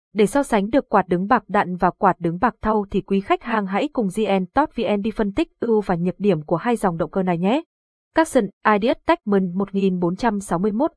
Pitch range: 180-230 Hz